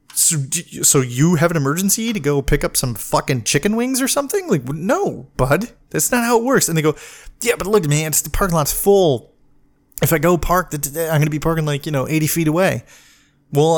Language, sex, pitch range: English, male, 135-185 Hz